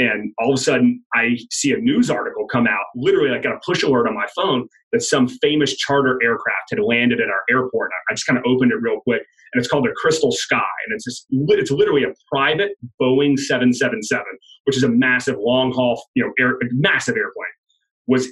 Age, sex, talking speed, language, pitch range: 30-49, male, 215 wpm, English, 125-210 Hz